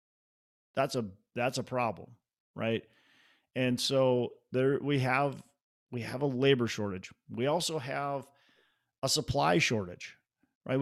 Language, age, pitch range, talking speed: English, 40-59, 115-140 Hz, 130 wpm